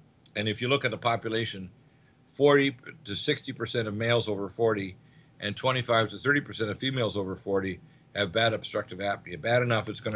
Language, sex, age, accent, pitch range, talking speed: English, male, 50-69, American, 100-120 Hz, 175 wpm